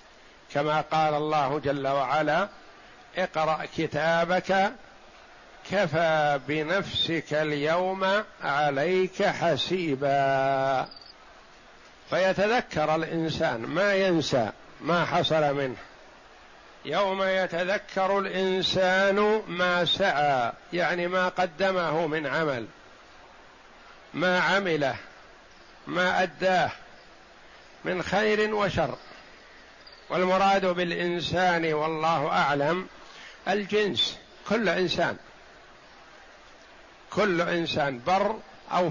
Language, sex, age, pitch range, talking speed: Arabic, male, 60-79, 155-195 Hz, 70 wpm